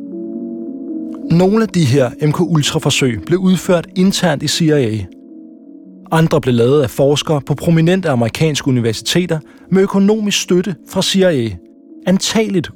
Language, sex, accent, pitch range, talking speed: Danish, male, native, 130-190 Hz, 120 wpm